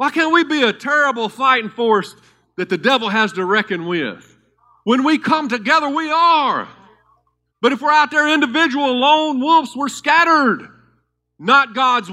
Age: 50-69